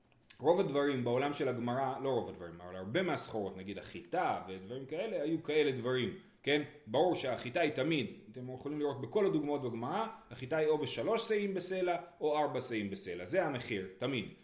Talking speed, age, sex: 175 wpm, 30-49, male